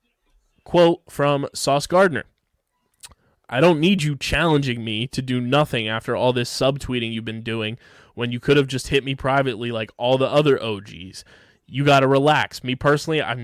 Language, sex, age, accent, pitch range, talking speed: English, male, 20-39, American, 115-145 Hz, 175 wpm